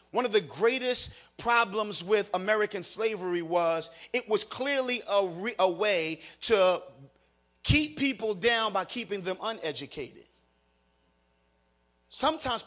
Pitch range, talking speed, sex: 155-230 Hz, 115 wpm, male